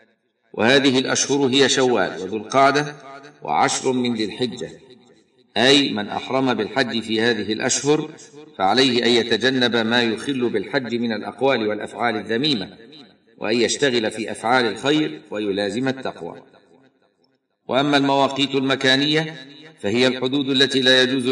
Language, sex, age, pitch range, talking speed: Arabic, male, 50-69, 115-135 Hz, 120 wpm